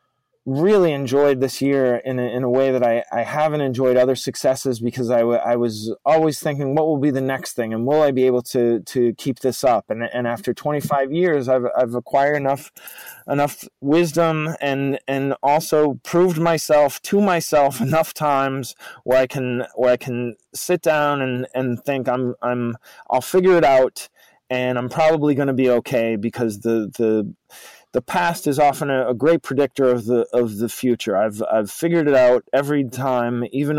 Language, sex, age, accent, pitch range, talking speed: English, male, 20-39, American, 120-150 Hz, 190 wpm